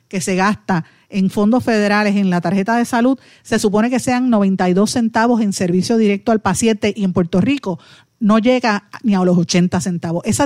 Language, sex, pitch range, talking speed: Spanish, female, 185-230 Hz, 195 wpm